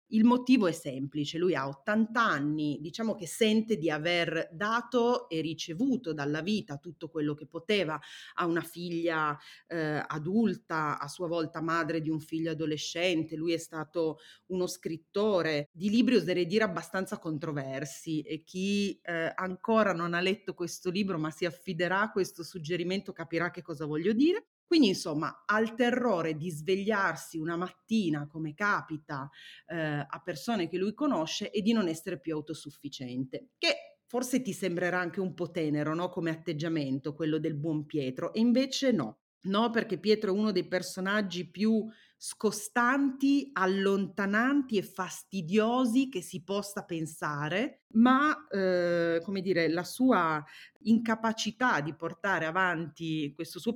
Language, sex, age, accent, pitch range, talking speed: Italian, female, 30-49, native, 160-210 Hz, 150 wpm